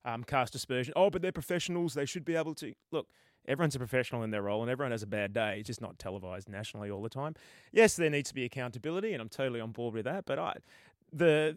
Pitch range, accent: 110-145 Hz, Australian